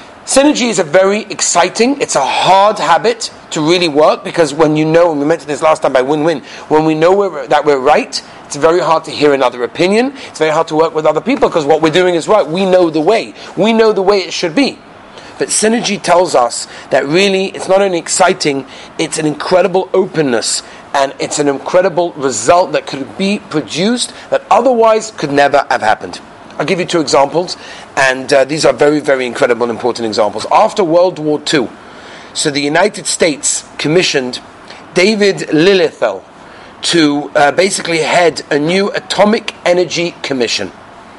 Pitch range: 155-220 Hz